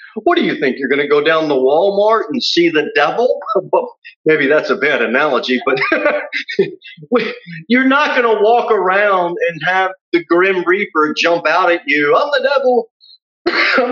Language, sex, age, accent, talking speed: English, male, 40-59, American, 175 wpm